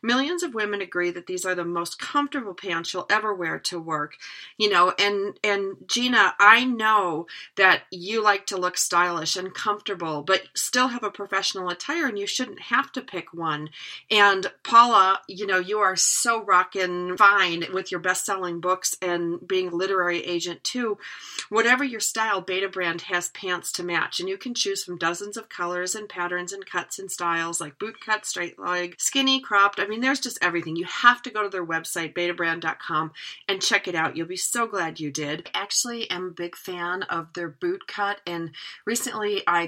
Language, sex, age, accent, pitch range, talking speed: English, female, 40-59, American, 170-205 Hz, 195 wpm